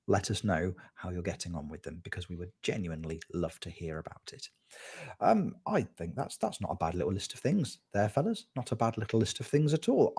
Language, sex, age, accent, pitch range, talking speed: English, male, 30-49, British, 90-130 Hz, 240 wpm